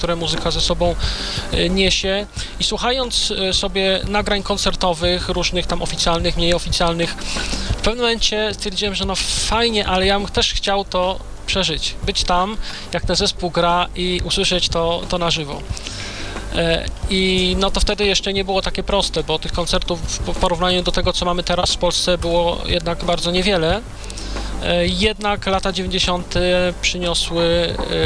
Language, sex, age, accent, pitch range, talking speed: Polish, male, 20-39, native, 160-185 Hz, 150 wpm